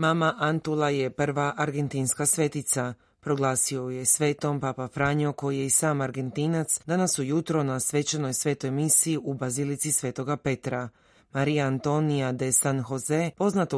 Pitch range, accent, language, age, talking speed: 130-150 Hz, native, Croatian, 30-49, 140 wpm